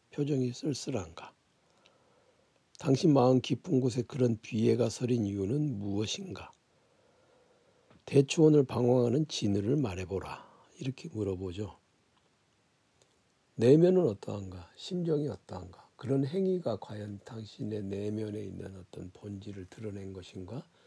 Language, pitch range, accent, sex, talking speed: English, 105-145 Hz, Korean, male, 90 wpm